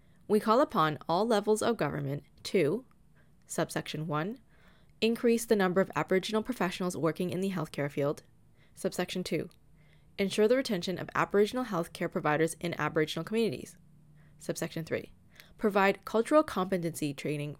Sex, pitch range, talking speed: female, 160-210 Hz, 135 wpm